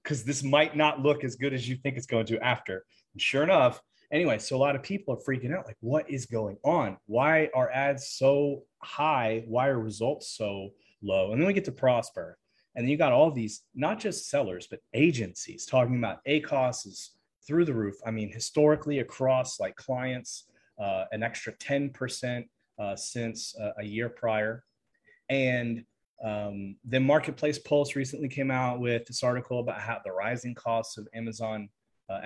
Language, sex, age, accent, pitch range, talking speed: English, male, 30-49, American, 110-140 Hz, 185 wpm